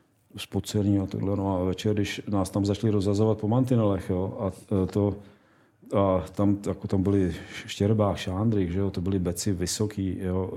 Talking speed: 160 wpm